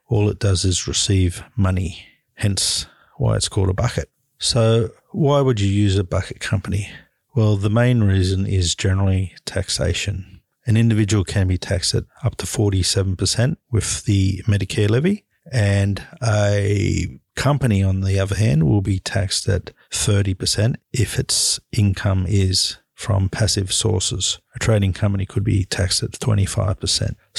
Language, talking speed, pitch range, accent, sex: English, 145 wpm, 95-110 Hz, Australian, male